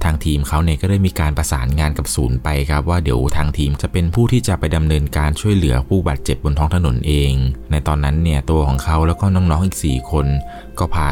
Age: 20-39